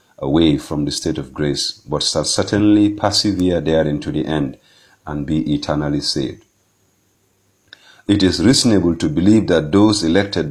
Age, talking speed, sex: 40-59, 150 wpm, male